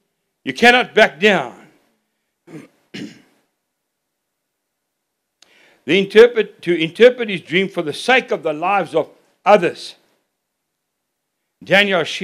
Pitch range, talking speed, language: 185-235 Hz, 95 wpm, English